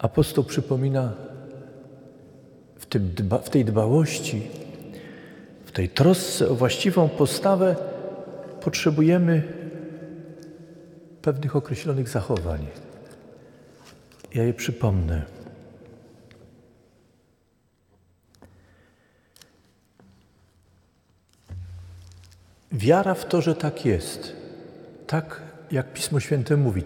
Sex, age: male, 50-69